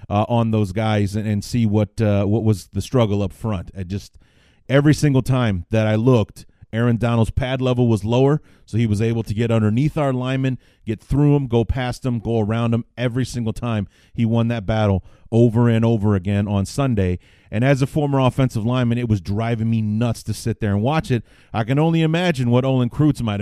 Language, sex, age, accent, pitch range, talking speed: English, male, 30-49, American, 105-130 Hz, 220 wpm